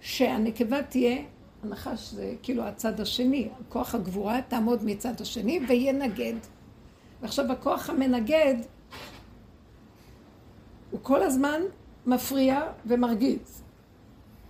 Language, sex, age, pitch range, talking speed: Hebrew, female, 60-79, 205-250 Hz, 85 wpm